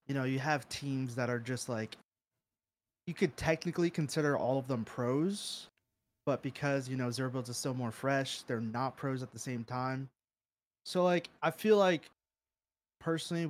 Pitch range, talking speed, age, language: 120-150 Hz, 180 wpm, 20-39, English